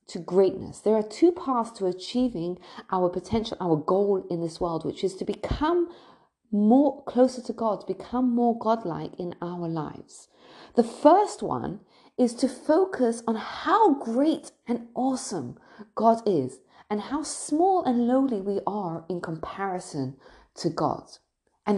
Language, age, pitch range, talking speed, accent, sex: English, 40-59, 200-280 Hz, 150 wpm, British, female